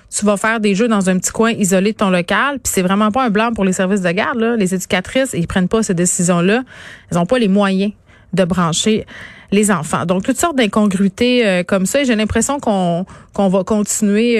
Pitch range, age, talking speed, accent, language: 195-235 Hz, 30-49, 230 wpm, Canadian, French